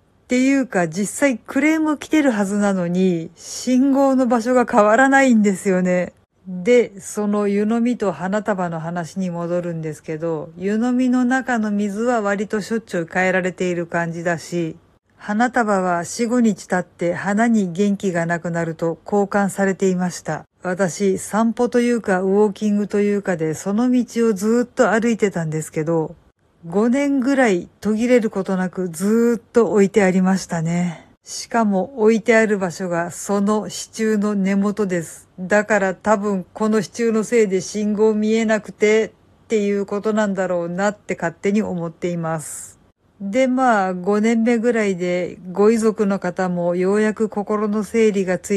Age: 50-69